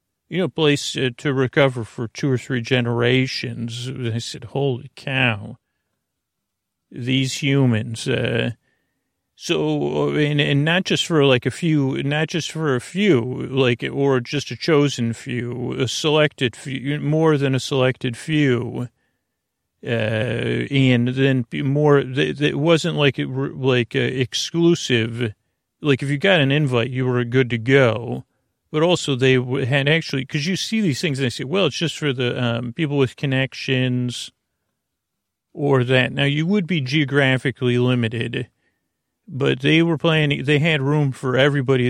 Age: 40-59